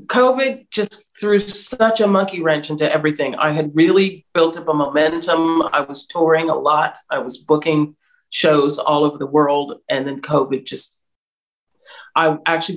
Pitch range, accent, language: 150-170 Hz, American, English